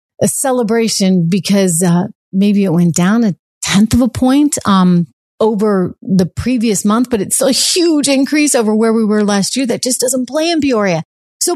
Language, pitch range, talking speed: English, 180-240 Hz, 190 wpm